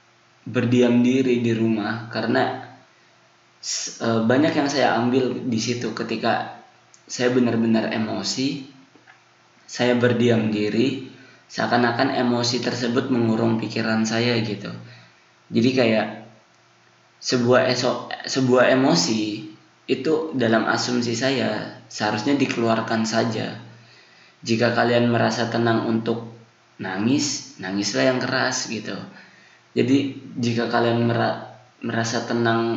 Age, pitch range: 20-39, 110-125 Hz